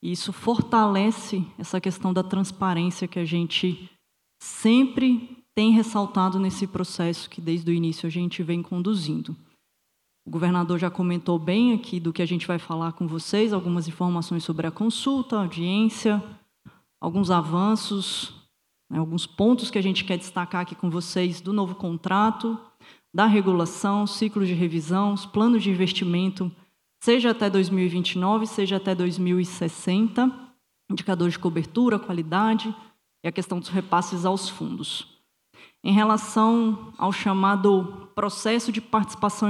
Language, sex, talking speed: Portuguese, female, 140 wpm